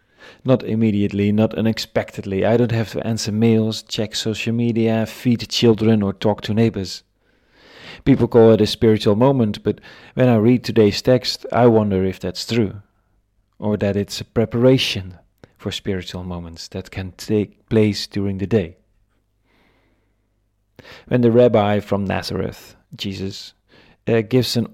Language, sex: English, male